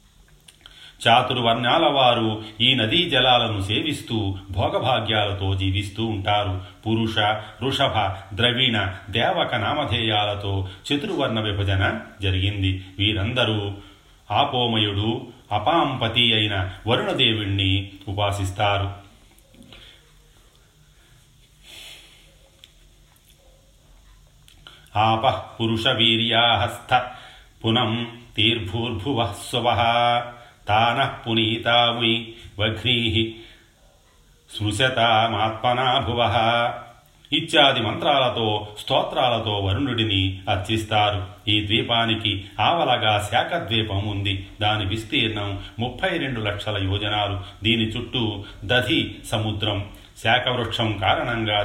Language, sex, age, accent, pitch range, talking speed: Telugu, male, 40-59, native, 100-120 Hz, 40 wpm